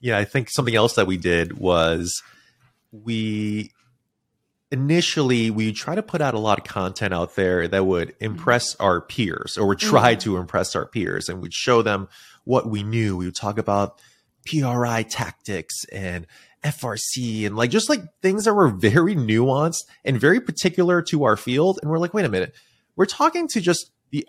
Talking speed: 185 wpm